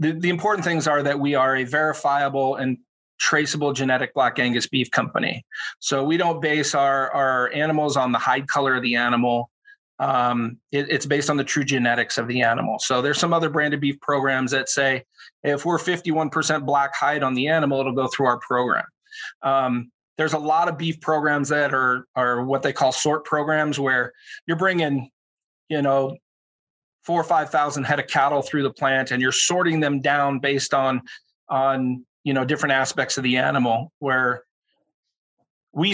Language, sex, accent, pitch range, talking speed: English, male, American, 130-155 Hz, 180 wpm